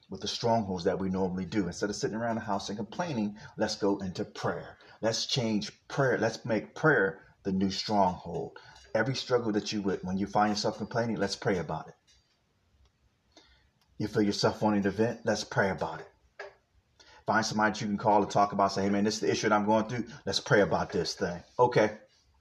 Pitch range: 100-115 Hz